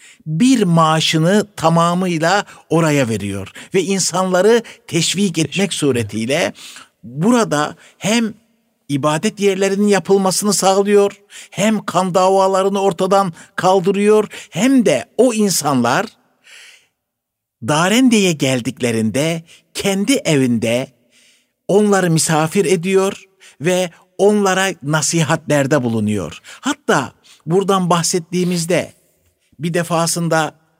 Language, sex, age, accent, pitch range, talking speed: Turkish, male, 60-79, native, 150-195 Hz, 80 wpm